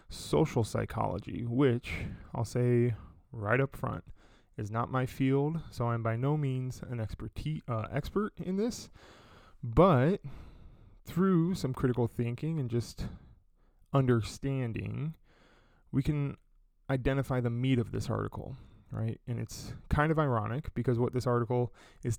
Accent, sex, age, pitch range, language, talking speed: American, male, 20-39, 115-135 Hz, English, 135 wpm